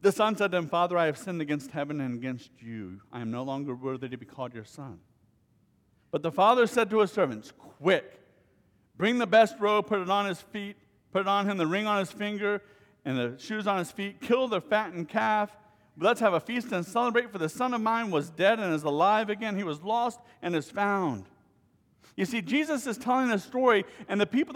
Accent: American